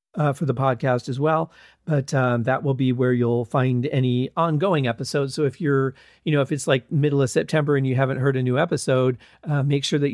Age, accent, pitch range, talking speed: 40-59, American, 130-155 Hz, 230 wpm